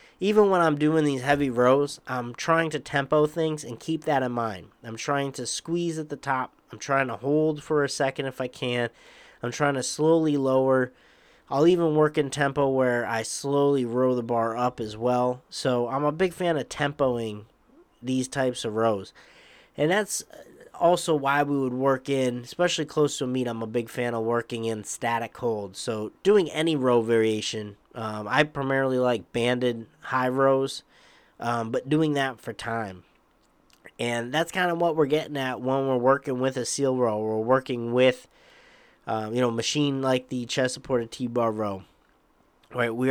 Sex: male